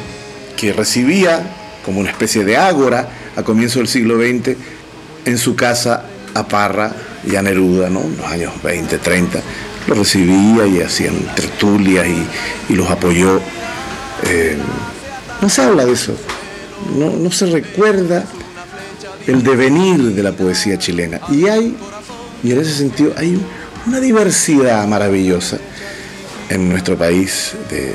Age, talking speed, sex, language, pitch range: 50-69, 140 wpm, male, Spanish, 95-140 Hz